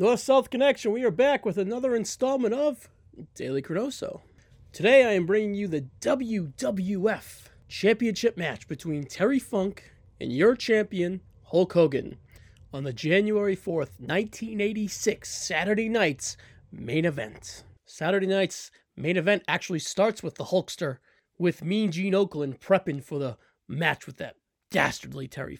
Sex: male